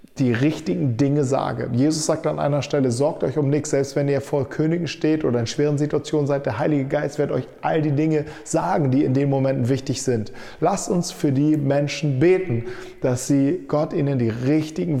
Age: 40-59